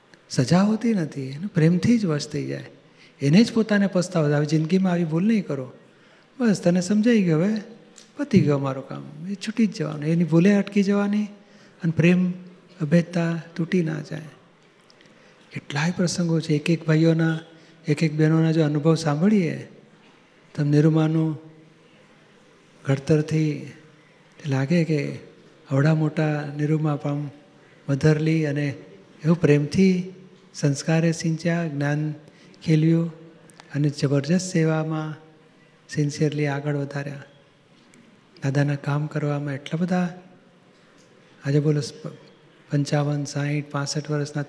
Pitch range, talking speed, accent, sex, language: 150-175 Hz, 120 wpm, native, male, Gujarati